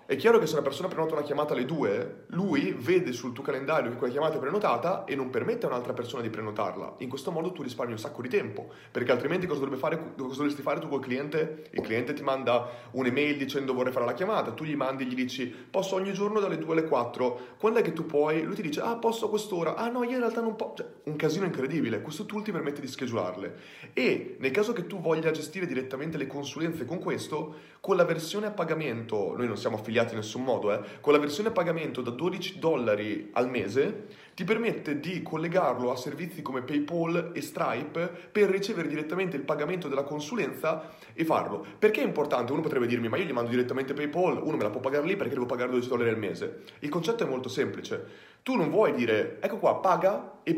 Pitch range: 135-195 Hz